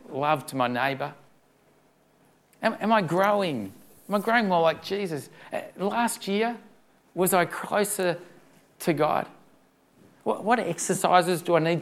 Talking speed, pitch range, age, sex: 135 wpm, 155-190 Hz, 40-59, male